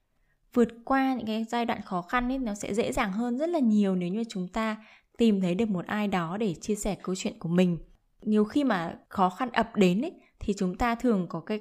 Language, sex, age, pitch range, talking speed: Vietnamese, female, 10-29, 185-240 Hz, 240 wpm